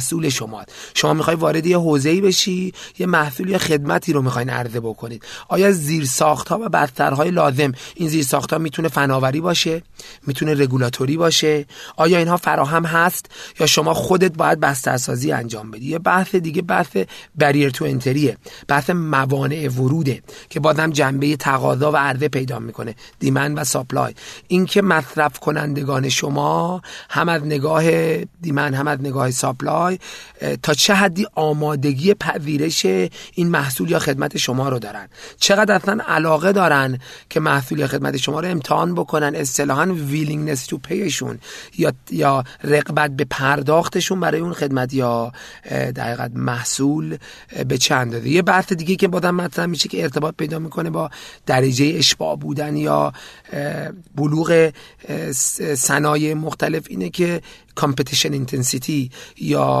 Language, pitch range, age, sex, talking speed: Persian, 140-165 Hz, 40-59, male, 130 wpm